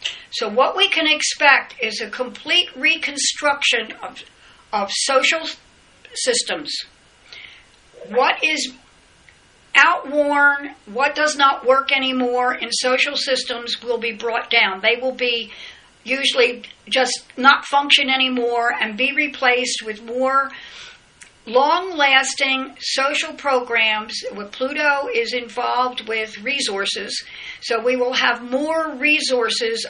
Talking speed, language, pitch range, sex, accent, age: 110 wpm, English, 235-285 Hz, female, American, 60-79